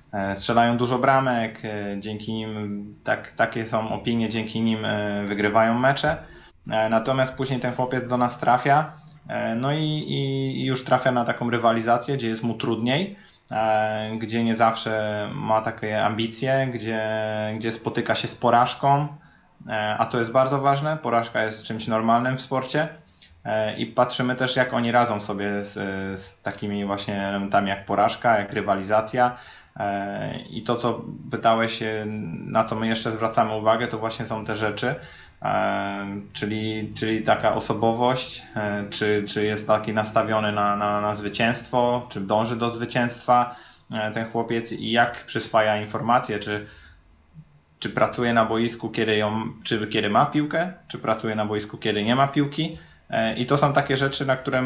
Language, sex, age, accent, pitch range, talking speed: Polish, male, 20-39, native, 105-125 Hz, 145 wpm